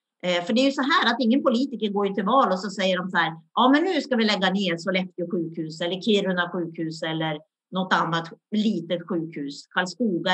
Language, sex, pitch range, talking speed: Swedish, female, 175-240 Hz, 210 wpm